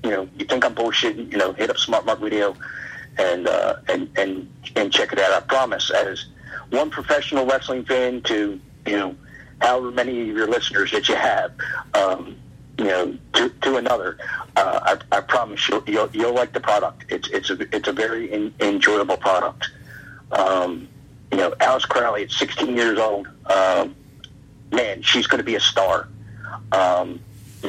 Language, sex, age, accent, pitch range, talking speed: English, male, 50-69, American, 95-120 Hz, 175 wpm